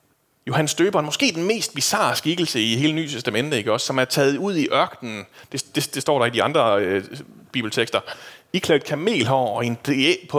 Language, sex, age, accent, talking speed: Danish, male, 30-49, native, 210 wpm